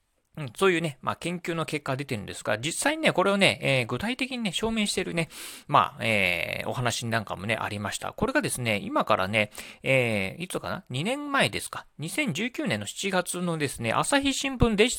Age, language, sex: 40-59, Japanese, male